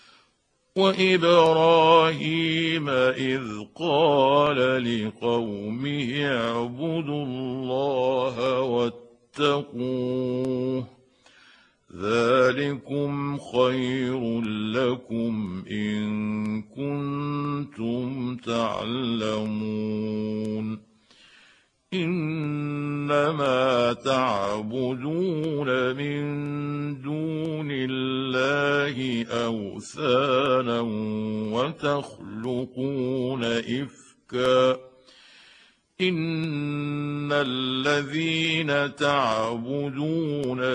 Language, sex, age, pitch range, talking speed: Arabic, male, 50-69, 115-140 Hz, 35 wpm